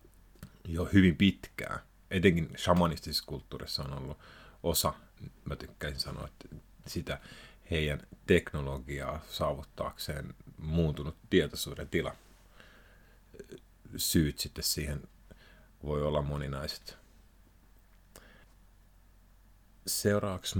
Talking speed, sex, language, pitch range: 80 wpm, male, Finnish, 75-90 Hz